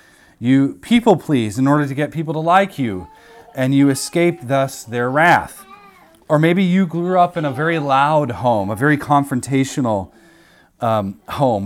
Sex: male